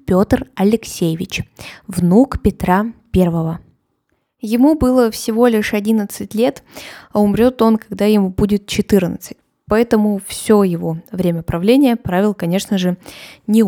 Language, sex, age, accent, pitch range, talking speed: Russian, female, 20-39, native, 190-235 Hz, 120 wpm